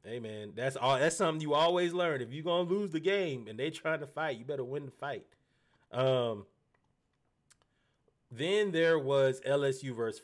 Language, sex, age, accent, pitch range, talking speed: English, male, 20-39, American, 120-150 Hz, 190 wpm